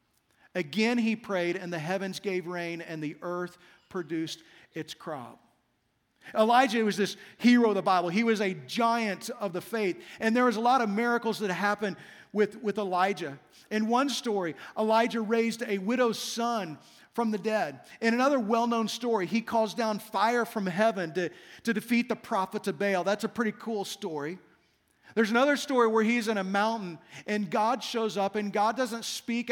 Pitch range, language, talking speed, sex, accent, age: 185-230 Hz, English, 180 wpm, male, American, 40-59